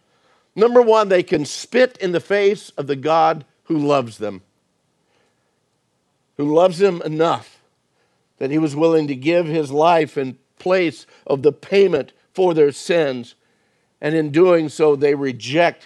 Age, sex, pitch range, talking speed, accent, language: 50-69, male, 135-170 Hz, 150 wpm, American, English